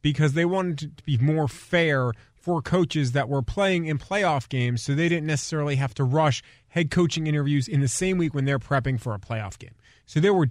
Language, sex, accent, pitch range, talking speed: English, male, American, 120-155 Hz, 225 wpm